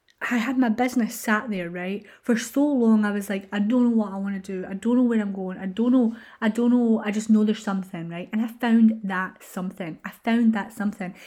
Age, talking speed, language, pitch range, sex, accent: 20-39, 255 wpm, English, 185-225 Hz, female, British